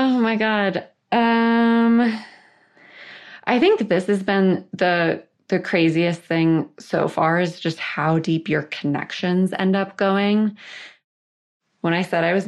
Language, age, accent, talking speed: English, 20-39, American, 140 wpm